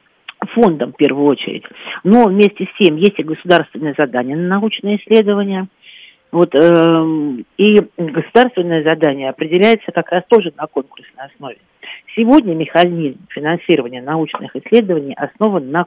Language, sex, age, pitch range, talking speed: Russian, female, 50-69, 150-195 Hz, 125 wpm